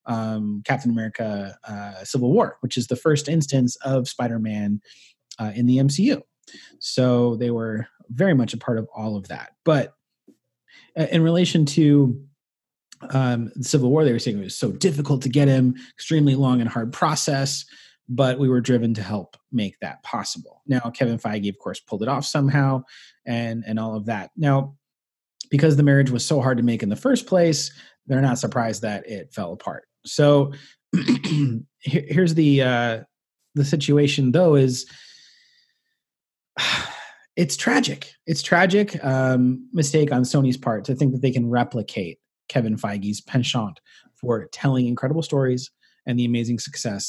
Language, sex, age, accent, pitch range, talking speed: English, male, 30-49, American, 120-145 Hz, 165 wpm